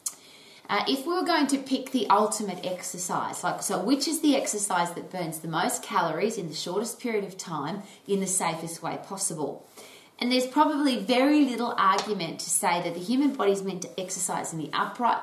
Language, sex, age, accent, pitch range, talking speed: English, female, 30-49, Australian, 180-240 Hz, 200 wpm